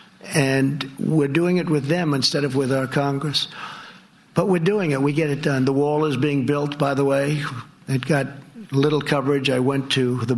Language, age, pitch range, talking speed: English, 50-69, 120-145 Hz, 200 wpm